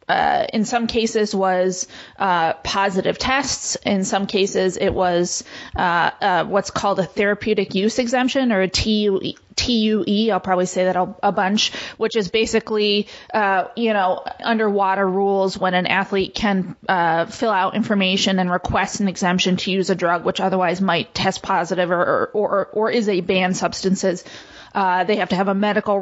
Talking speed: 170 wpm